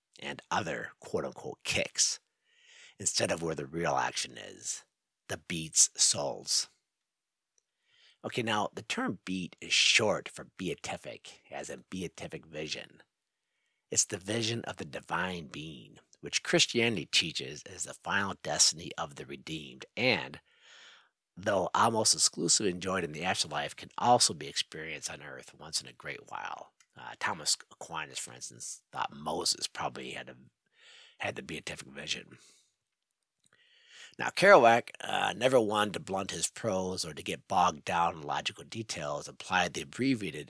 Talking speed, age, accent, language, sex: 145 wpm, 50-69, American, English, male